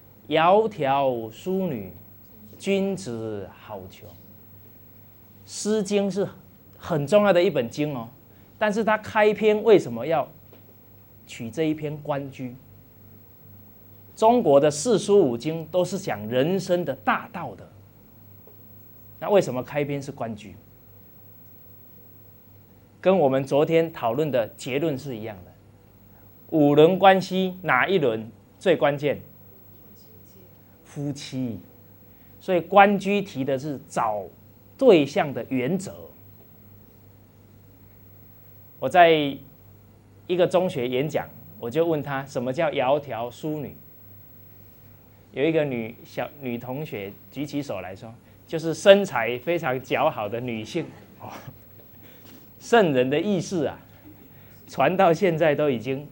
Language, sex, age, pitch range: English, male, 30-49, 100-150 Hz